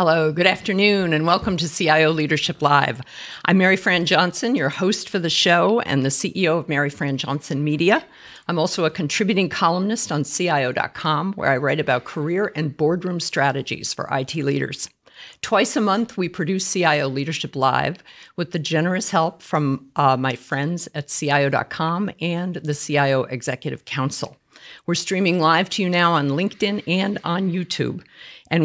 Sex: female